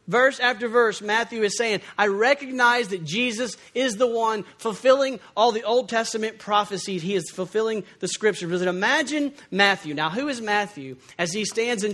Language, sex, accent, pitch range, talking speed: English, male, American, 190-245 Hz, 170 wpm